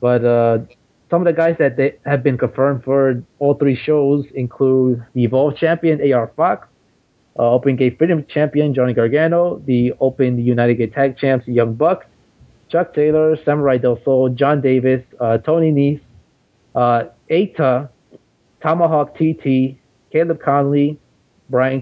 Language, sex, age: English, male, 30-49